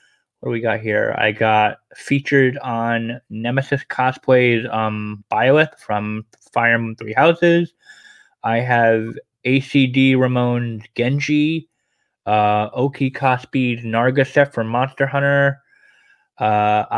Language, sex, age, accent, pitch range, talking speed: English, male, 10-29, American, 120-140 Hz, 110 wpm